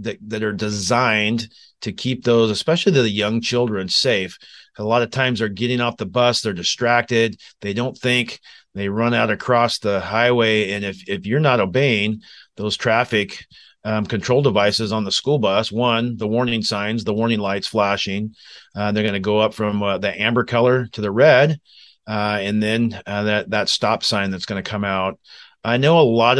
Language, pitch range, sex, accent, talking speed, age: English, 105-120 Hz, male, American, 195 wpm, 40-59